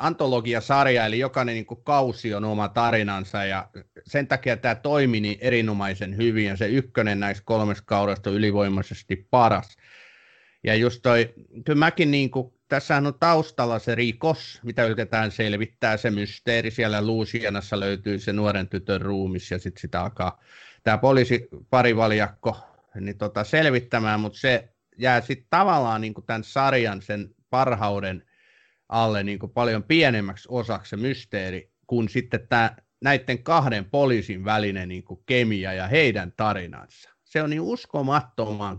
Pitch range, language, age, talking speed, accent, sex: 100-125 Hz, Finnish, 30-49, 140 wpm, native, male